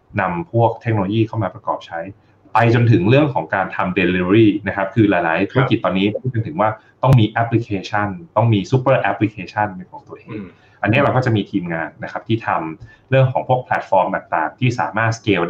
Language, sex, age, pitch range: Thai, male, 30-49, 95-115 Hz